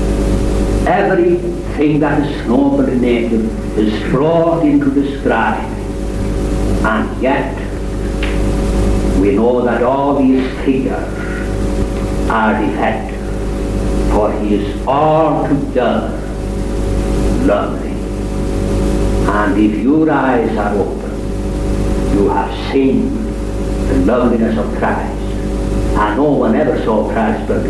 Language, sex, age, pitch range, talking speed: English, male, 60-79, 95-120 Hz, 100 wpm